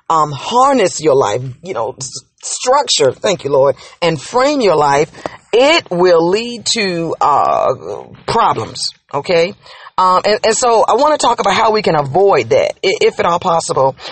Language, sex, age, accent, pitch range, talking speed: English, female, 40-59, American, 160-200 Hz, 165 wpm